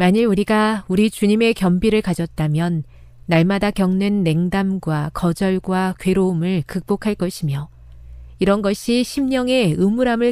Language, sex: Korean, female